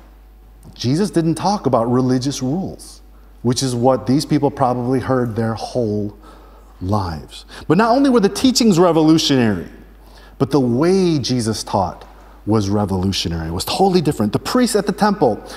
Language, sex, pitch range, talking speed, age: English, male, 115-175 Hz, 150 wpm, 30-49